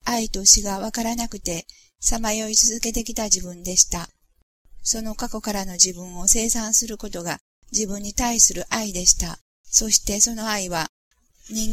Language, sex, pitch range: Japanese, female, 190-225 Hz